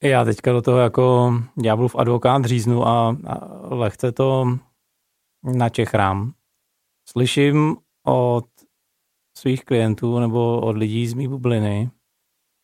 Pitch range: 110-130 Hz